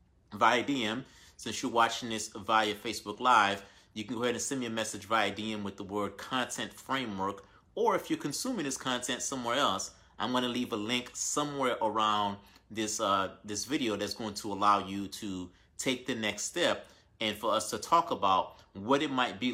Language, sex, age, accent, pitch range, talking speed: English, male, 30-49, American, 100-125 Hz, 200 wpm